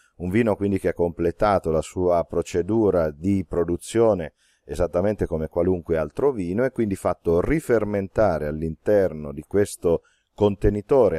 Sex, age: male, 40-59